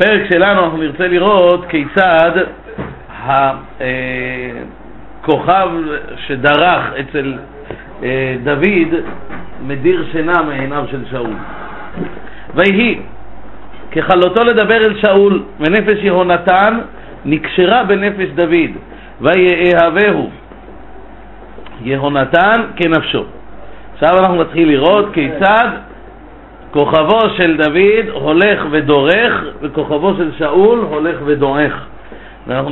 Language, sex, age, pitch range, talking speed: Hebrew, male, 50-69, 140-185 Hz, 80 wpm